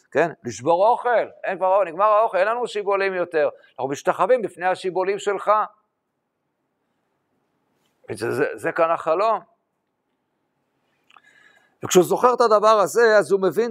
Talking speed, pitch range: 130 wpm, 175-235 Hz